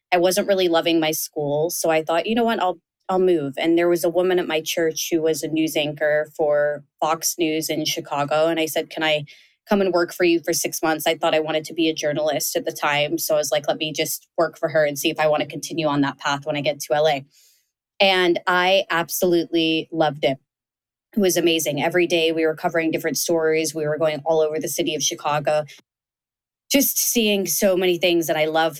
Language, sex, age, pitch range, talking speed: English, female, 20-39, 150-175 Hz, 235 wpm